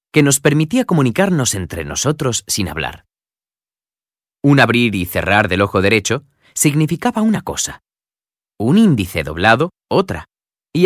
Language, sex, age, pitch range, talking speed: Slovak, male, 30-49, 95-145 Hz, 125 wpm